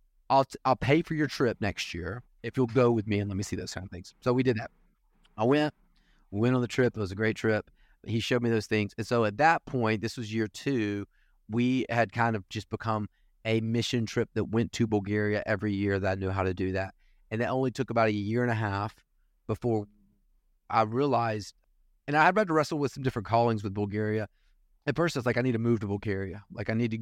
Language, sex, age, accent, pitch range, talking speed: English, male, 30-49, American, 105-125 Hz, 245 wpm